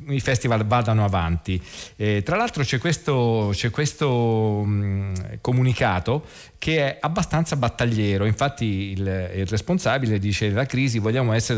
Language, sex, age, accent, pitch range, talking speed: Italian, male, 40-59, native, 105-125 Hz, 125 wpm